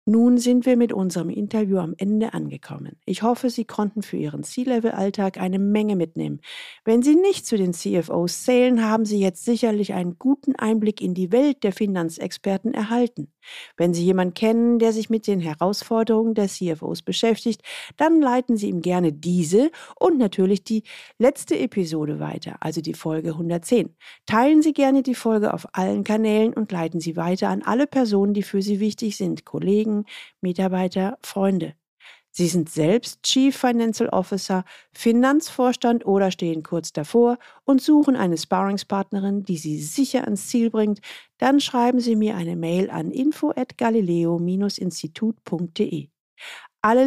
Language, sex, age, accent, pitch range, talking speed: German, female, 50-69, German, 180-235 Hz, 155 wpm